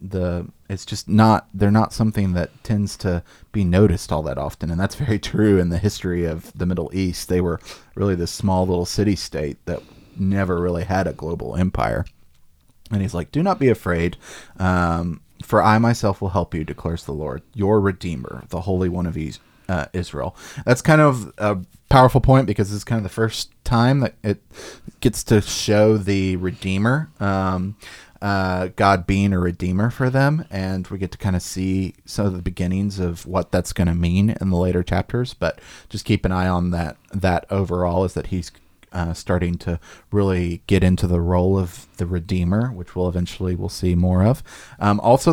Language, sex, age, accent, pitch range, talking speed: English, male, 30-49, American, 90-105 Hz, 195 wpm